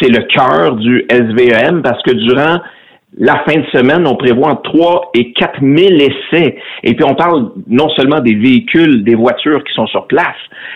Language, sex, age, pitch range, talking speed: French, male, 60-79, 120-165 Hz, 195 wpm